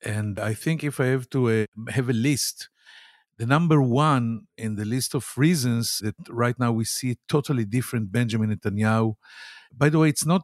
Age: 50-69